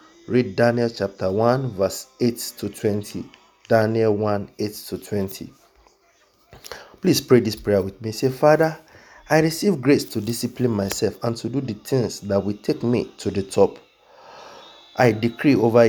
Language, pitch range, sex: English, 100-125 Hz, male